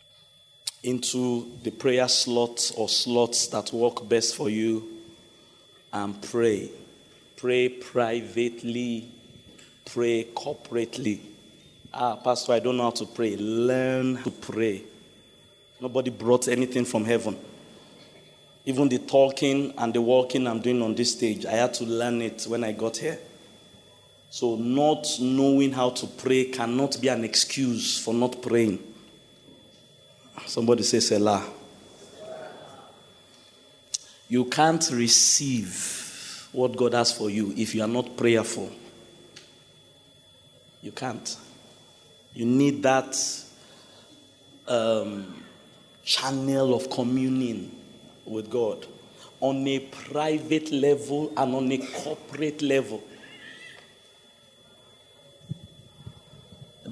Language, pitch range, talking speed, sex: English, 115-135 Hz, 110 wpm, male